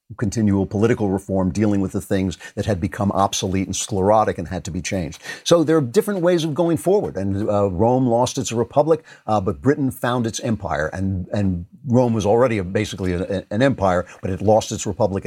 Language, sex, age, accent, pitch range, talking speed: English, male, 50-69, American, 95-125 Hz, 210 wpm